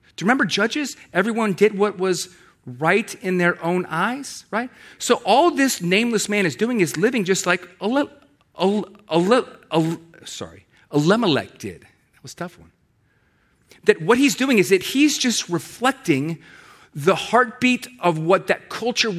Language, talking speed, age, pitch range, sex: English, 165 wpm, 40-59, 185-250 Hz, male